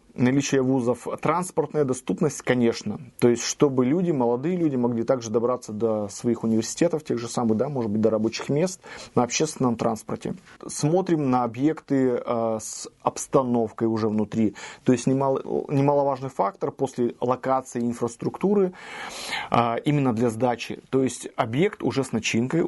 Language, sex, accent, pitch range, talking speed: Russian, male, native, 120-150 Hz, 140 wpm